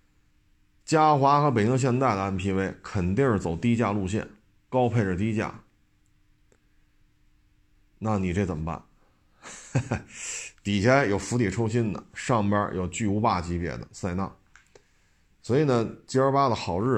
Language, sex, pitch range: Chinese, male, 95-130 Hz